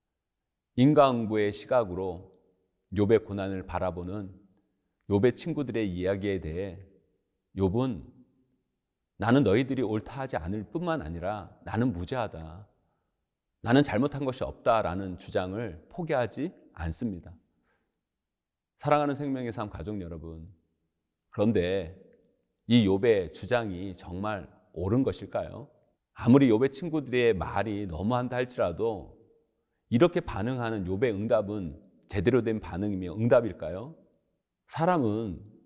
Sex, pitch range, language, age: male, 95-125 Hz, Korean, 40-59